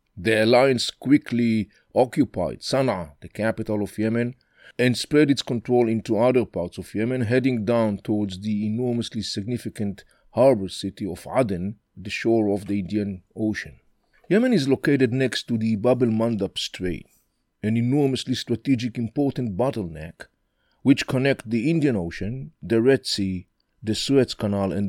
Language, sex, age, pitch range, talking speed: English, male, 50-69, 100-130 Hz, 145 wpm